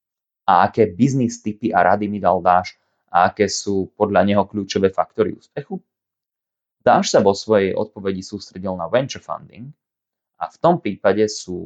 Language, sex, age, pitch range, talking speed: Slovak, male, 20-39, 95-115 Hz, 160 wpm